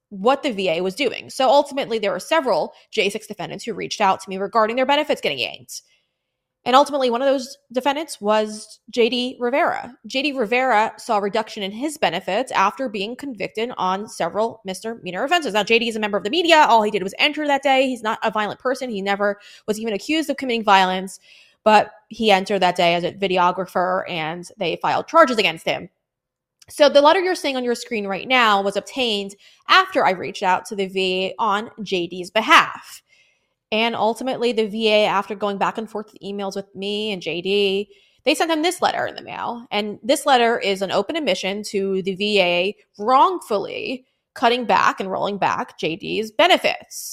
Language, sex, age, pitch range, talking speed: English, female, 20-39, 195-260 Hz, 190 wpm